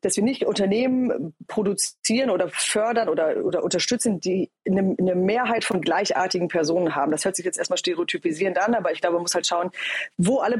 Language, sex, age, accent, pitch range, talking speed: German, female, 30-49, German, 175-225 Hz, 195 wpm